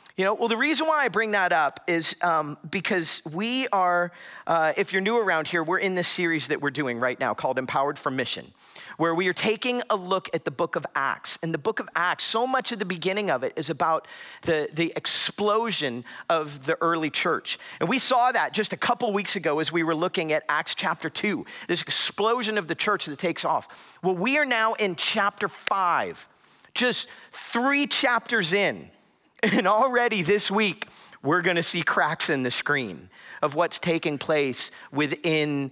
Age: 40-59